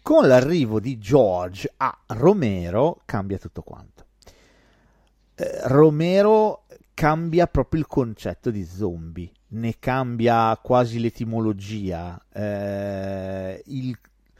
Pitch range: 100-140 Hz